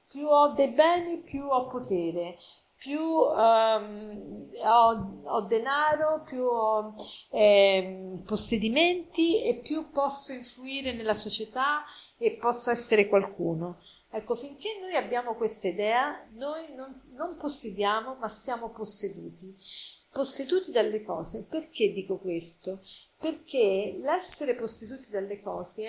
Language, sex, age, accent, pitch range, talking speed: Italian, female, 40-59, native, 210-275 Hz, 115 wpm